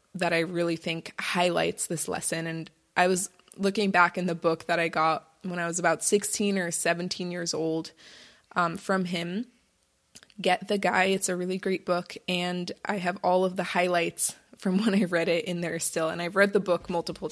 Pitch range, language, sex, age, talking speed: 175-200 Hz, English, female, 20-39, 205 wpm